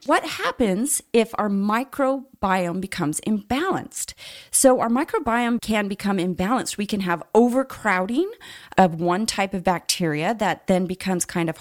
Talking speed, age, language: 140 wpm, 30-49, English